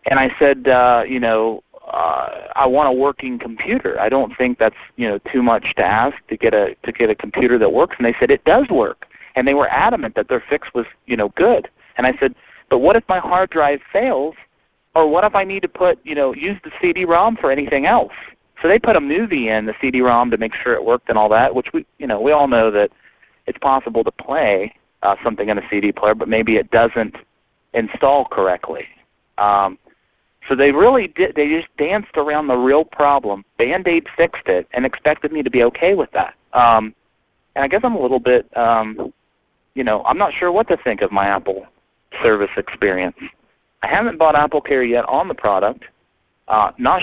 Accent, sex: American, male